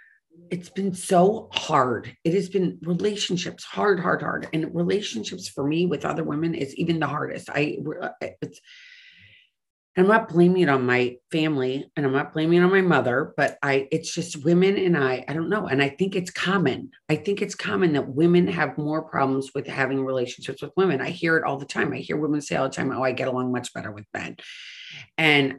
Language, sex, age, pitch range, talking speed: English, female, 40-59, 125-170 Hz, 210 wpm